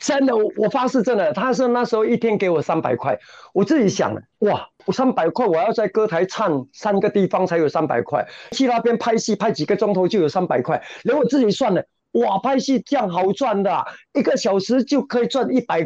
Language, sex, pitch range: Chinese, male, 170-225 Hz